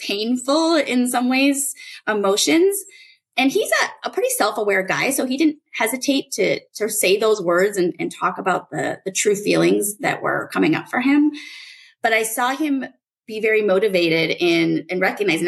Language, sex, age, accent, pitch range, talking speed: English, female, 30-49, American, 190-295 Hz, 175 wpm